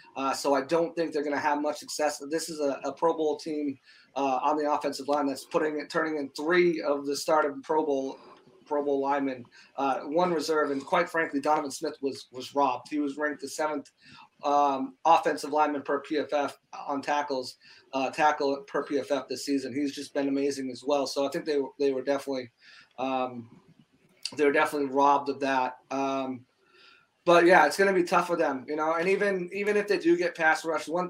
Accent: American